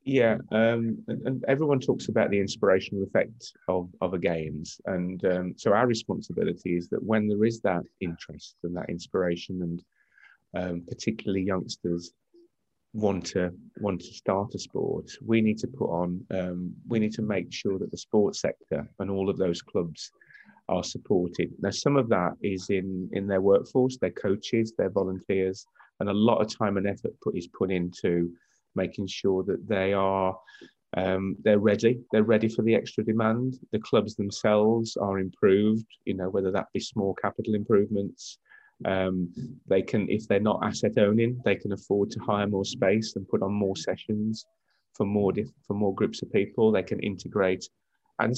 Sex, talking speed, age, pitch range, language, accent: male, 180 wpm, 30-49, 95-110 Hz, English, British